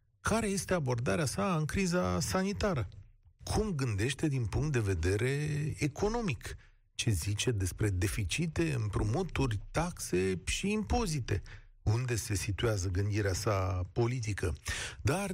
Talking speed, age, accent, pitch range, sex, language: 115 wpm, 40-59, native, 105-145 Hz, male, Romanian